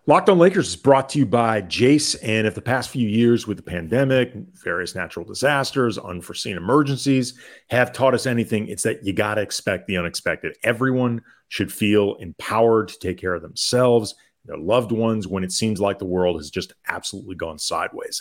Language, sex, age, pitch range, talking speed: English, male, 40-59, 95-120 Hz, 195 wpm